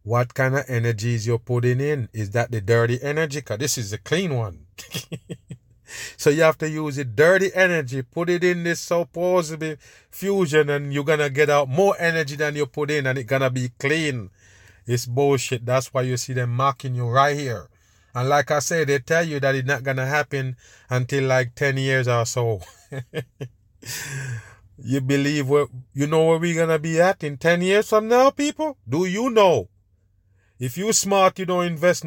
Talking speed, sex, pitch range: 200 wpm, male, 120-175 Hz